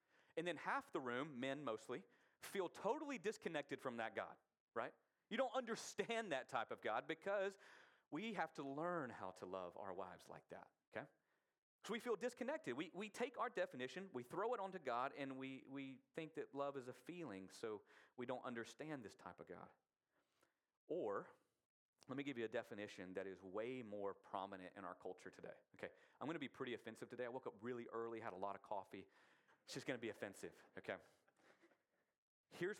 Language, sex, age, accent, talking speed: English, male, 40-59, American, 195 wpm